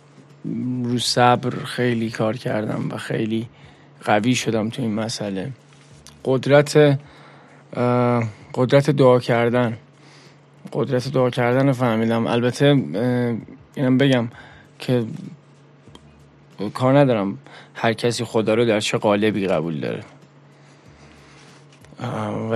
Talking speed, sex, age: 95 wpm, male, 20-39